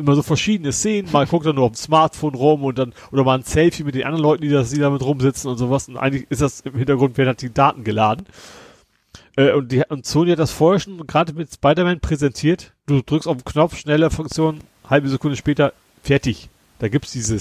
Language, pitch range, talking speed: German, 125-150 Hz, 230 wpm